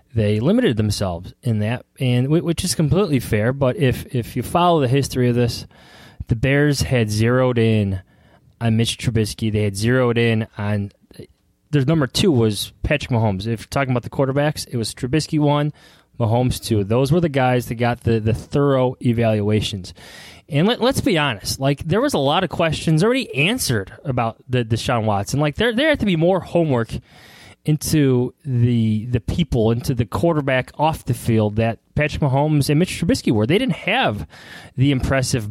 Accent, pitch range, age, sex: American, 110-145 Hz, 20-39, male